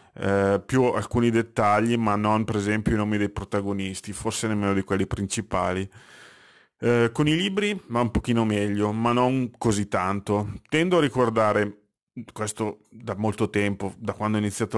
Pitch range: 100-120 Hz